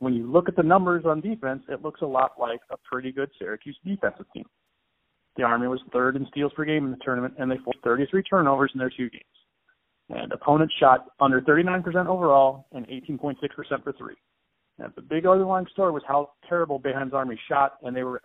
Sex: male